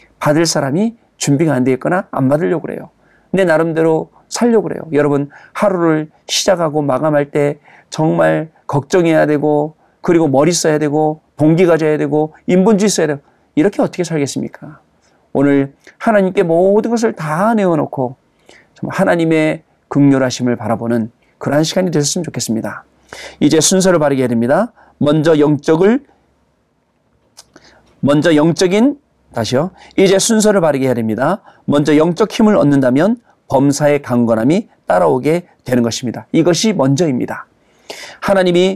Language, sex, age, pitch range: Korean, male, 40-59, 140-185 Hz